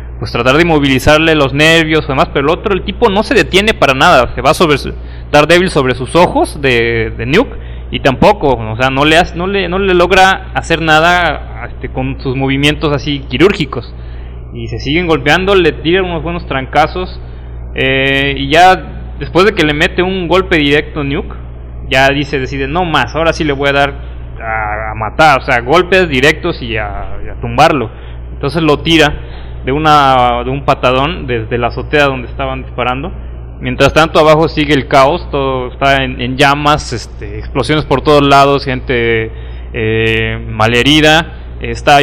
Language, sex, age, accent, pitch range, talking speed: English, male, 30-49, Mexican, 115-160 Hz, 180 wpm